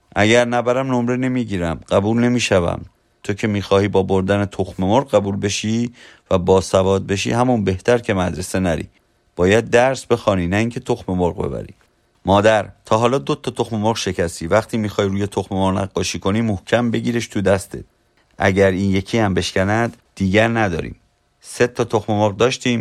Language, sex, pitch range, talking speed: Persian, male, 95-115 Hz, 170 wpm